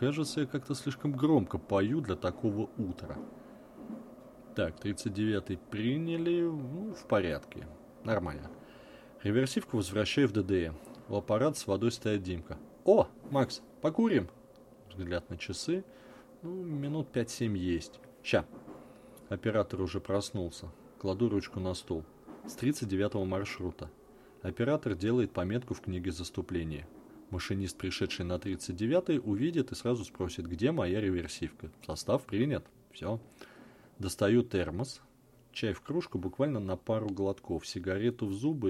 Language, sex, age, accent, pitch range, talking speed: Russian, male, 30-49, native, 95-120 Hz, 120 wpm